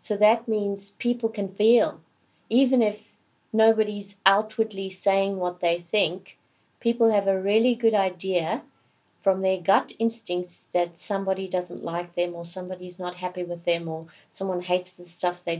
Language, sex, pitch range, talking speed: English, female, 180-210 Hz, 160 wpm